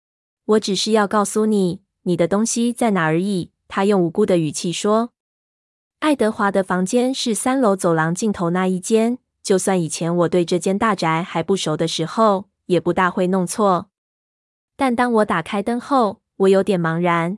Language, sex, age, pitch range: Chinese, female, 20-39, 175-215 Hz